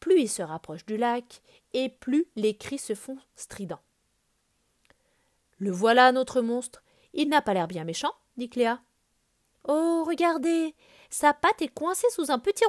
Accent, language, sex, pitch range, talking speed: French, French, female, 205-315 Hz, 160 wpm